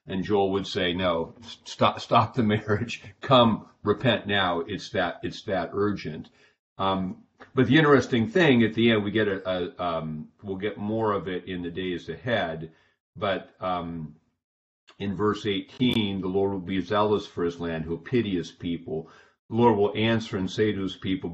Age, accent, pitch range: 50-69, American, 90-105 Hz